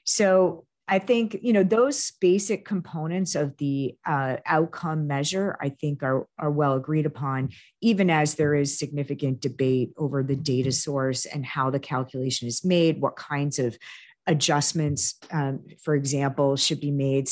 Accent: American